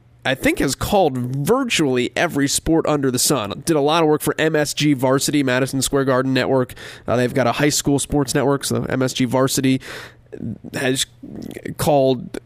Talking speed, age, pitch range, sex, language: 170 wpm, 20-39, 125-150 Hz, male, English